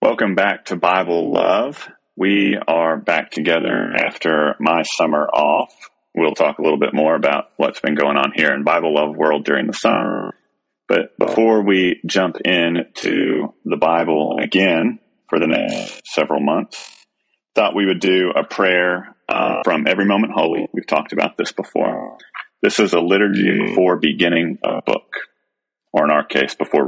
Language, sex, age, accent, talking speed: English, male, 30-49, American, 165 wpm